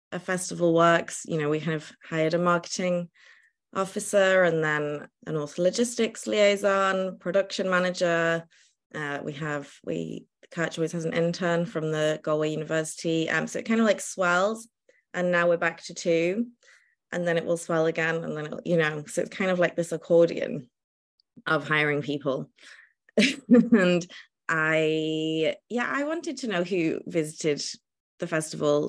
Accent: British